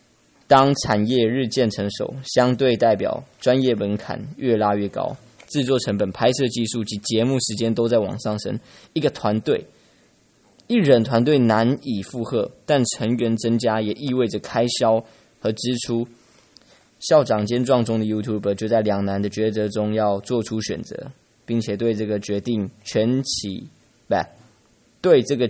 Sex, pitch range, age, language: male, 105-125 Hz, 20-39, English